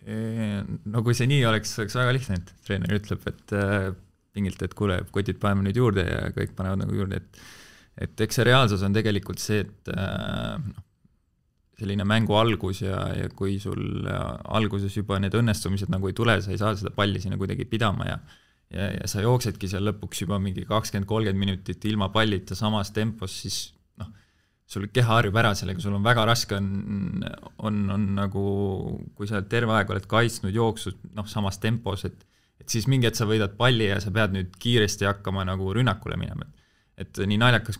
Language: English